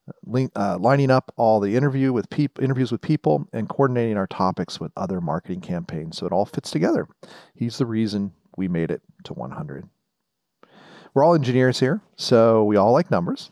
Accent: American